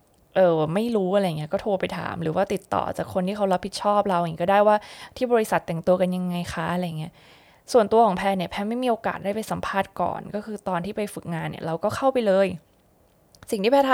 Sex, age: female, 20-39